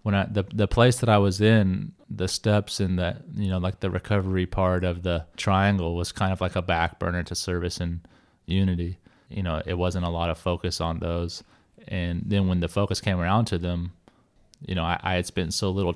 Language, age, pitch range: English, 30-49, 85-100 Hz